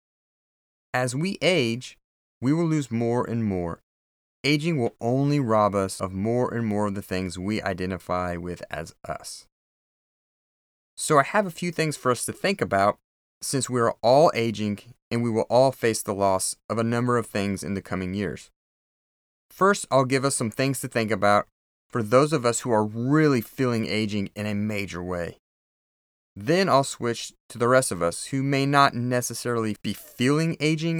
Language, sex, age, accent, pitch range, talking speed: English, male, 30-49, American, 100-135 Hz, 185 wpm